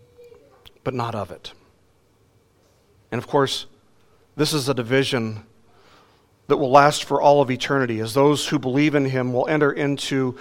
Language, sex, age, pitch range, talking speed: English, male, 40-59, 115-150 Hz, 155 wpm